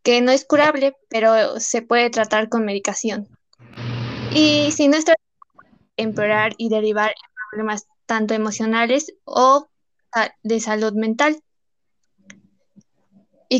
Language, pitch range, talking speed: Spanish, 220-260 Hz, 115 wpm